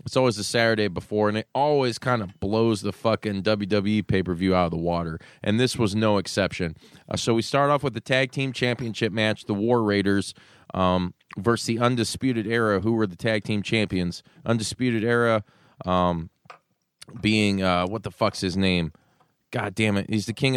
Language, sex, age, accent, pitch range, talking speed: English, male, 20-39, American, 100-125 Hz, 190 wpm